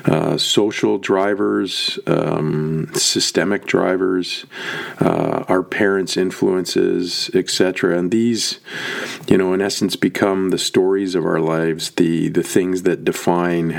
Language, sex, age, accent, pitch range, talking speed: English, male, 40-59, American, 85-95 Hz, 120 wpm